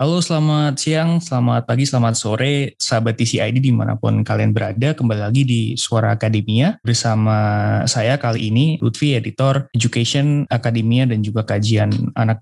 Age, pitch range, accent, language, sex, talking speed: 20-39, 110-135 Hz, native, Indonesian, male, 140 wpm